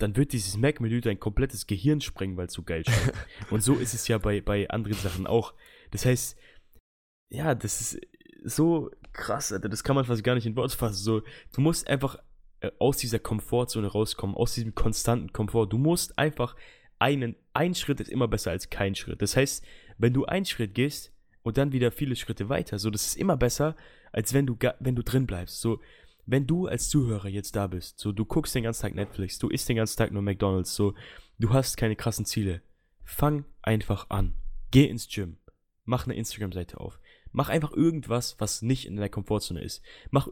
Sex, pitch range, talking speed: male, 105-135 Hz, 205 wpm